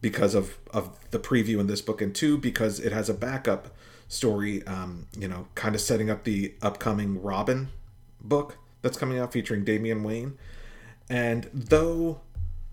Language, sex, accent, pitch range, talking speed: English, male, American, 100-120 Hz, 165 wpm